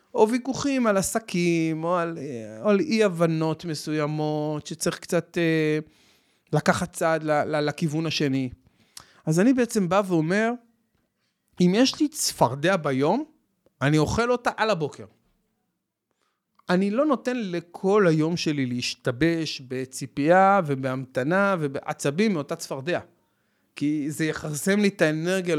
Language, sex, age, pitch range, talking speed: Hebrew, male, 30-49, 140-195 Hz, 115 wpm